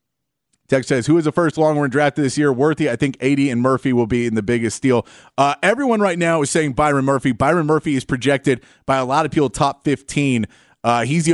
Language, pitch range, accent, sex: English, 120-145 Hz, American, male